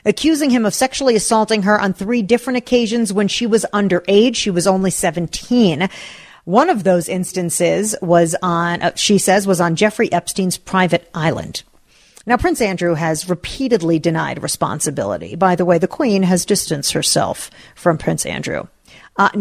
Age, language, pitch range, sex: 40-59, English, 175-230 Hz, female